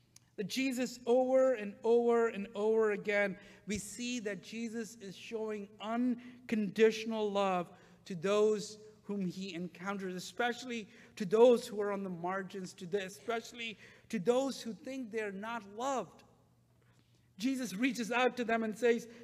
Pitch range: 190-230 Hz